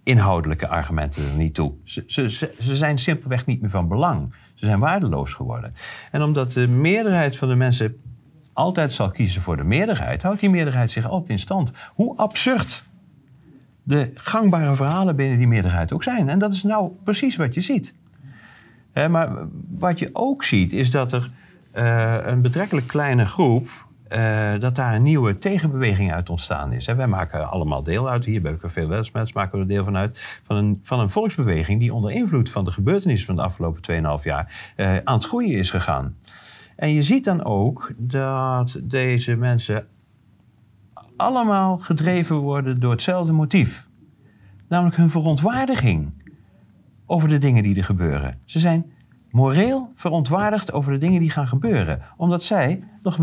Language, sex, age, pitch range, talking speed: Dutch, male, 40-59, 105-165 Hz, 175 wpm